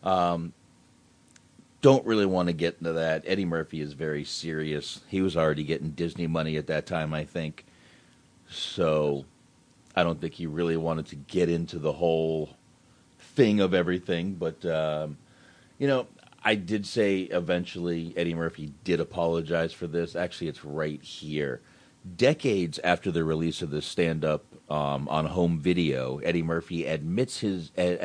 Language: English